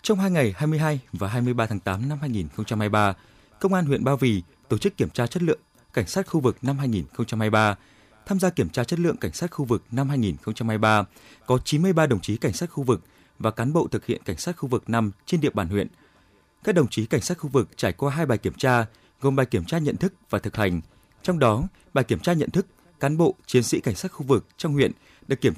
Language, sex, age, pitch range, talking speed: Vietnamese, male, 20-39, 110-155 Hz, 240 wpm